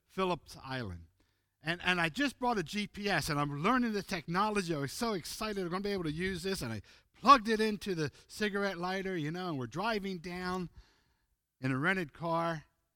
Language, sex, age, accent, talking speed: English, male, 50-69, American, 205 wpm